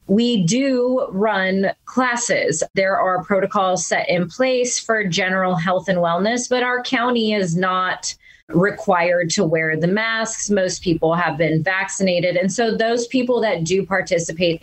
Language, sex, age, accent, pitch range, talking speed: English, female, 20-39, American, 175-245 Hz, 150 wpm